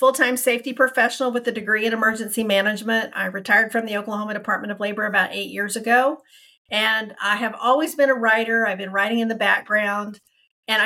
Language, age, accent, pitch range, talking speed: English, 40-59, American, 200-250 Hz, 195 wpm